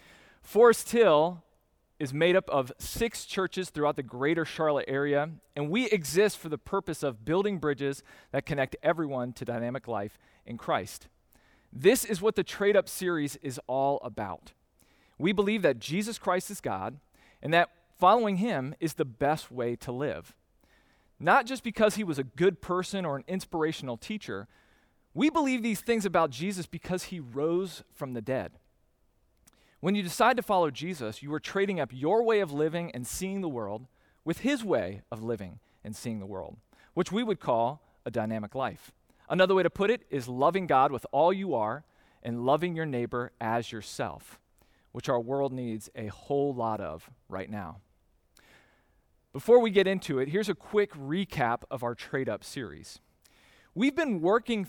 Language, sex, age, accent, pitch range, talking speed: English, male, 40-59, American, 130-195 Hz, 175 wpm